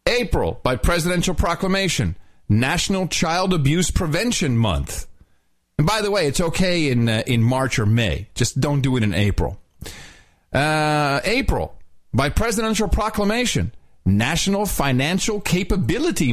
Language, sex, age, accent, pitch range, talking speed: English, male, 40-59, American, 105-175 Hz, 130 wpm